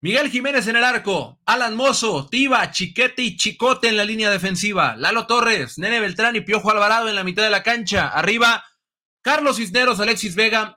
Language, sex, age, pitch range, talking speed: Spanish, male, 30-49, 175-225 Hz, 185 wpm